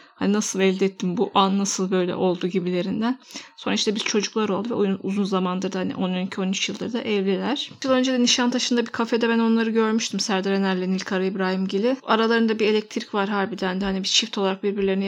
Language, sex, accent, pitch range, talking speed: Turkish, female, native, 195-225 Hz, 205 wpm